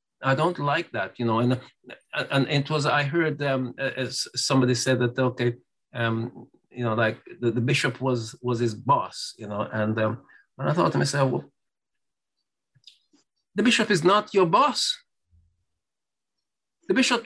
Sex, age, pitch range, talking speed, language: male, 50-69, 180-265 Hz, 165 wpm, English